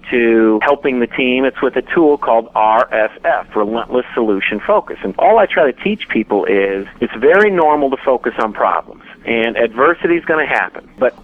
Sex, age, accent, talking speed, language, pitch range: male, 50-69, American, 180 wpm, English, 115-155 Hz